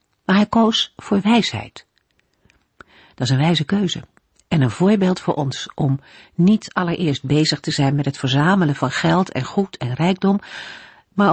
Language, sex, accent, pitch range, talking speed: Dutch, female, Dutch, 140-195 Hz, 165 wpm